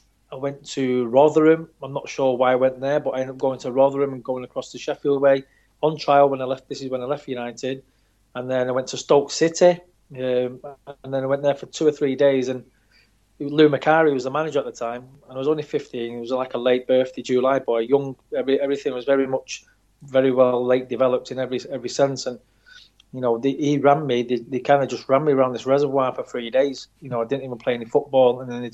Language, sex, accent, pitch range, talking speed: English, male, British, 125-140 Hz, 245 wpm